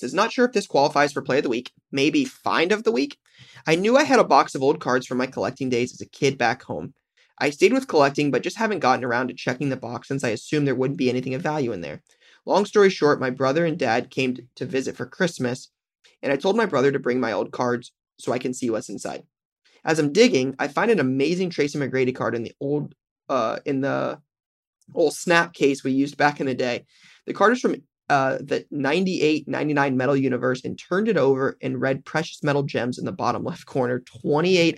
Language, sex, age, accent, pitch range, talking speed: English, male, 20-39, American, 130-180 Hz, 235 wpm